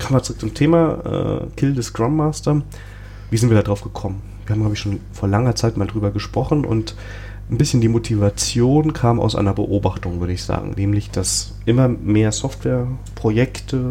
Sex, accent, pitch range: male, German, 100-120 Hz